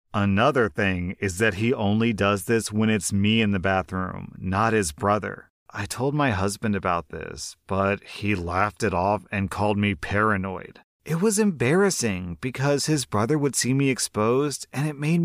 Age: 30-49